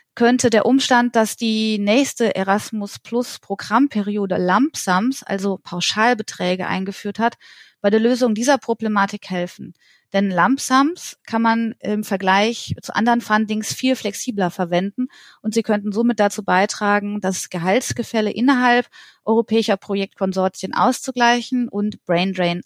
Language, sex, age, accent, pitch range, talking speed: German, female, 30-49, German, 195-235 Hz, 120 wpm